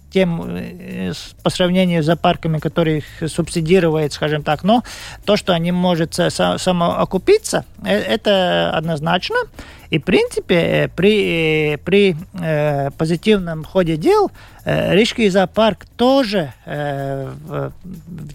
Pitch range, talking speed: 155-200 Hz, 90 wpm